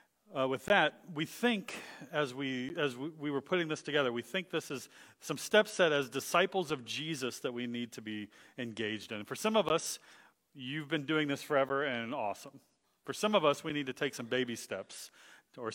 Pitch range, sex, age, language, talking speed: 120-155 Hz, male, 40-59, English, 210 wpm